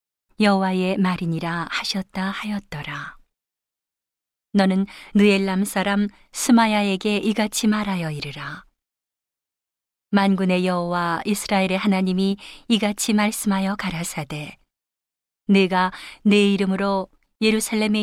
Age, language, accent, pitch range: 40-59, Korean, native, 180-210 Hz